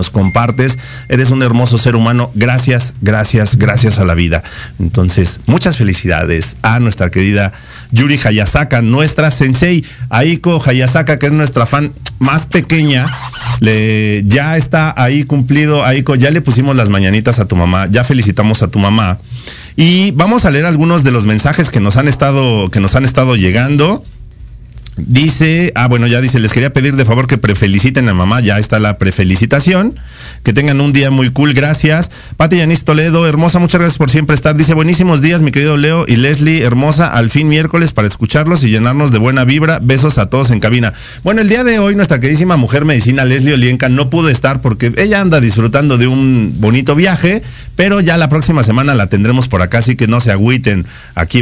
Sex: male